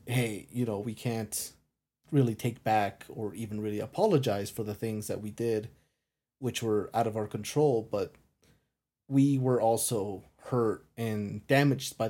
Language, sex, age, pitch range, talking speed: English, male, 30-49, 105-130 Hz, 160 wpm